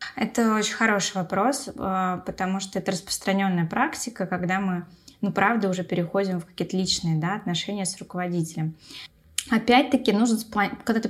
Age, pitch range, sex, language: 20-39, 180-225 Hz, female, Russian